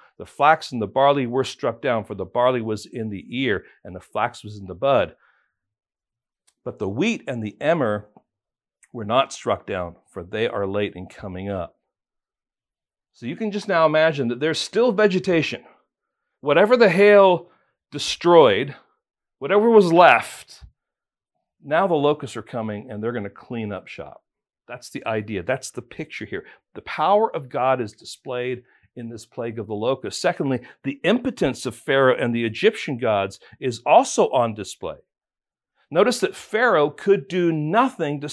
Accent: American